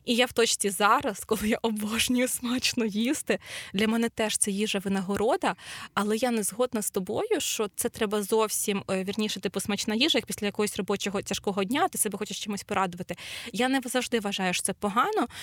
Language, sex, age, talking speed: Ukrainian, female, 20-39, 185 wpm